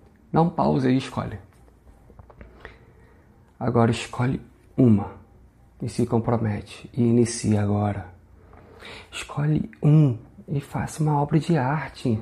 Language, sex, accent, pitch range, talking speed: Portuguese, male, Brazilian, 115-160 Hz, 110 wpm